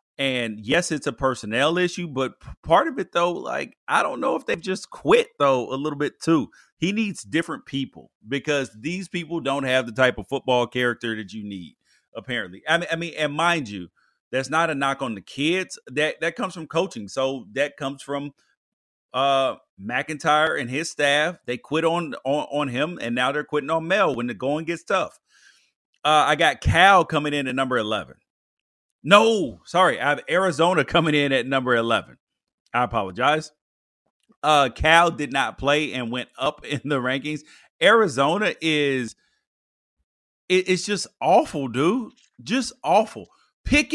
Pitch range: 135-205 Hz